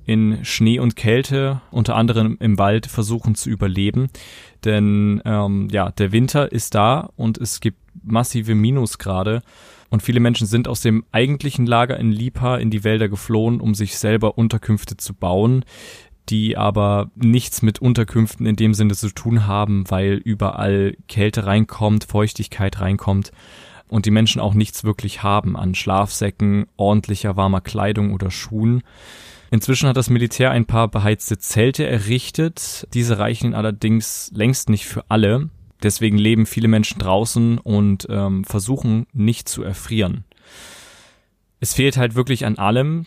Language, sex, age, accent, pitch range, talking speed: German, male, 20-39, German, 105-120 Hz, 150 wpm